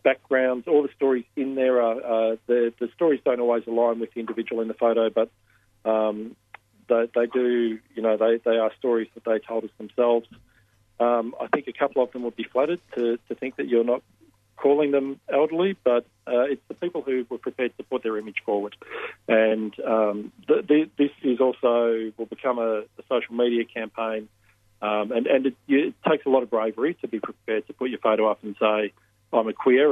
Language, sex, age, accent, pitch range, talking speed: English, male, 40-59, Australian, 110-120 Hz, 205 wpm